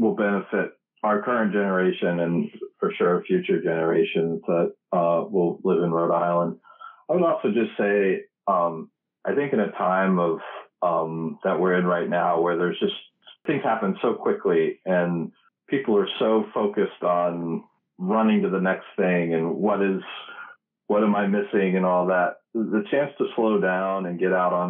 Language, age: English, 40-59